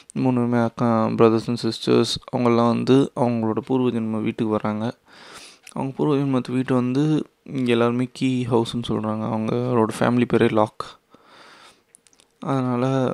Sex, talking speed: male, 125 wpm